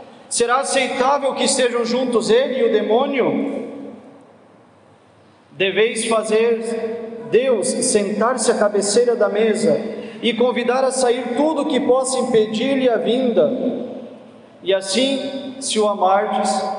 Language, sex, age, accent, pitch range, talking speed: Portuguese, male, 40-59, Brazilian, 200-245 Hz, 120 wpm